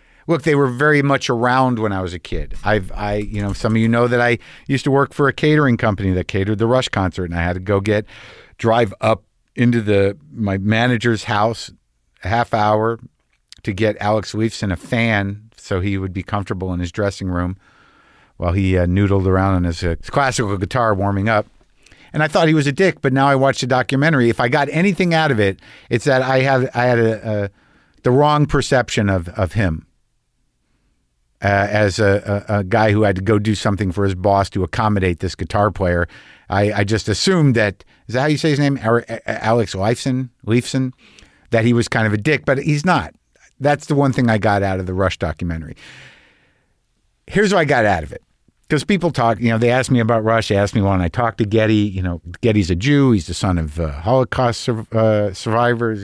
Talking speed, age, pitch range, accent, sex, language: 220 wpm, 50-69, 100-130 Hz, American, male, English